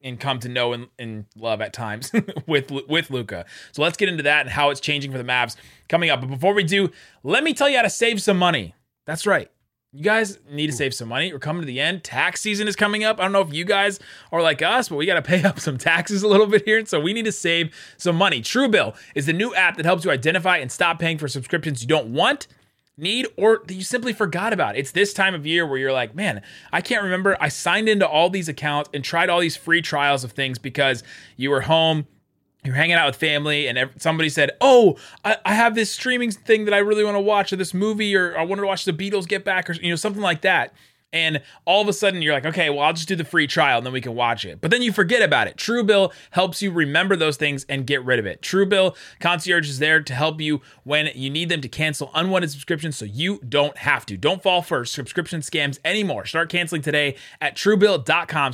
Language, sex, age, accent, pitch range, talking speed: English, male, 30-49, American, 140-195 Hz, 250 wpm